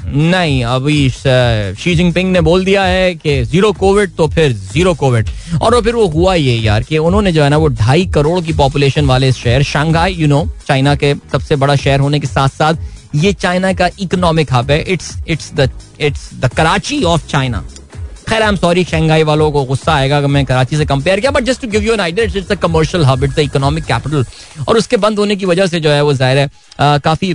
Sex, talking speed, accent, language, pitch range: male, 215 wpm, native, Hindi, 130-165 Hz